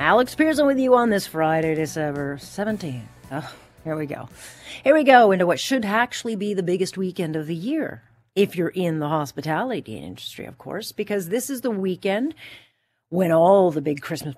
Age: 40-59